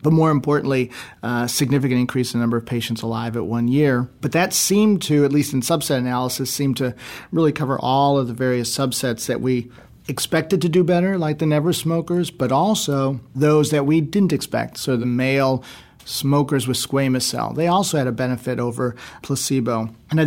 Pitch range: 125-145 Hz